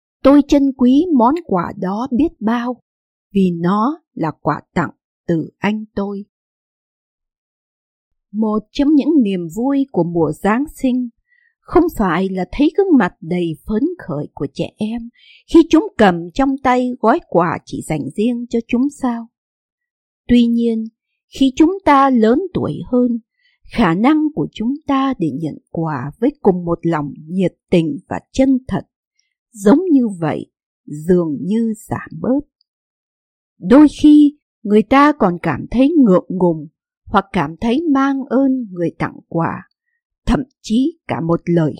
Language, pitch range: Vietnamese, 175-285 Hz